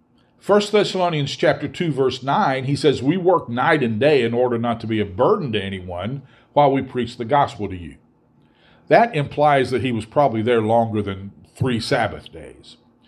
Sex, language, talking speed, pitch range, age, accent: male, English, 190 wpm, 120-160 Hz, 50-69, American